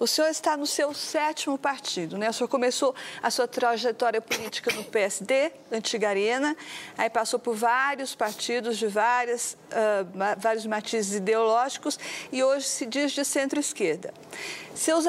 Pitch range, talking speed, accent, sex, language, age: 225-280 Hz, 140 wpm, Brazilian, female, Portuguese, 50-69